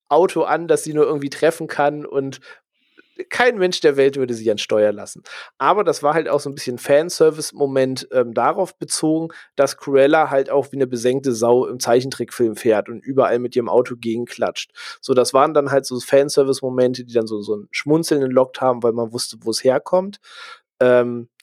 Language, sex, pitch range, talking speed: German, male, 120-155 Hz, 195 wpm